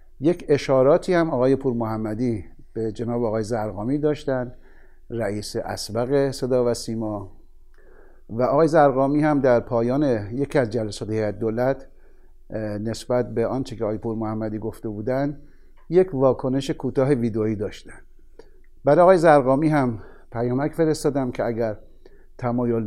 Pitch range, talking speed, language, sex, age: 105-125 Hz, 125 wpm, Persian, male, 60-79